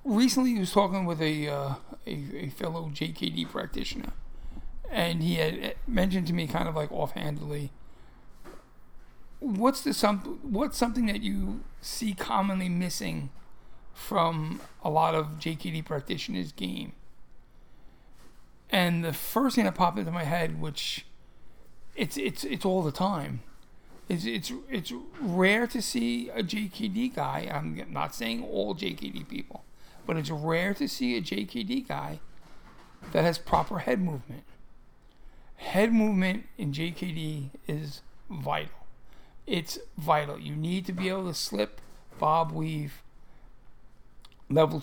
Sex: male